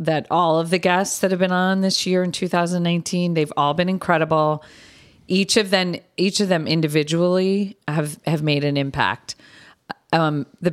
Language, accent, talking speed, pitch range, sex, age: English, American, 175 wpm, 140-175 Hz, female, 40-59